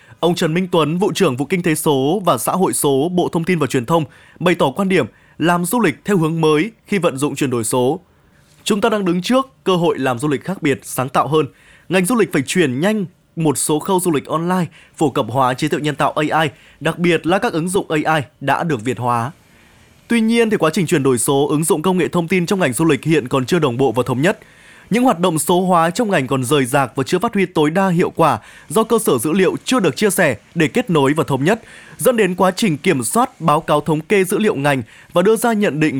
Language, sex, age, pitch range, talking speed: Vietnamese, male, 20-39, 145-195 Hz, 265 wpm